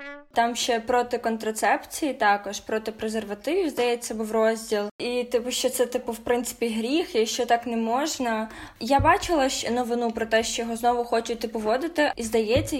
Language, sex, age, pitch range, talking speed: Ukrainian, female, 20-39, 225-260 Hz, 175 wpm